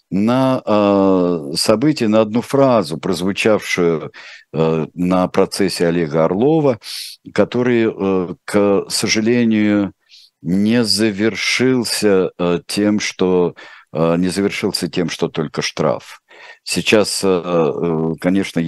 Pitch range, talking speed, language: 85-110 Hz, 80 wpm, Russian